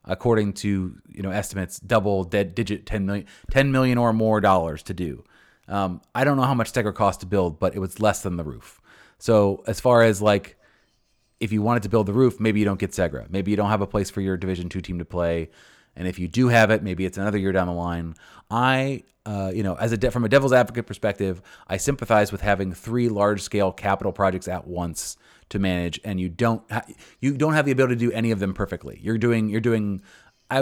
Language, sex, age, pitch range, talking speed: English, male, 30-49, 95-120 Hz, 235 wpm